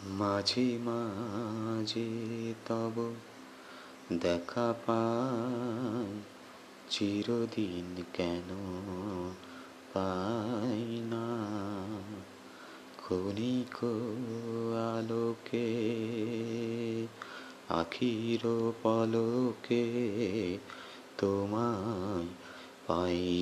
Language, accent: Bengali, native